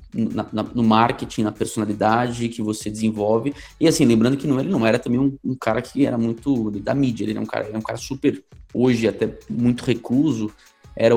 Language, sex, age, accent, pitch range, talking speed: Portuguese, male, 20-39, Brazilian, 110-125 Hz, 185 wpm